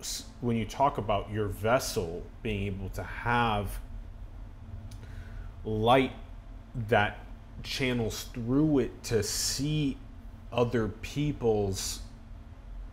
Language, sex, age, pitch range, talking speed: English, male, 30-49, 100-115 Hz, 90 wpm